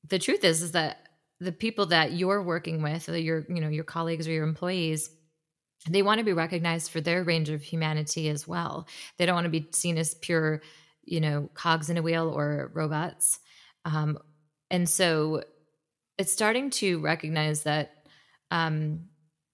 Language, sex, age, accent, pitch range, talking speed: English, female, 20-39, American, 155-175 Hz, 175 wpm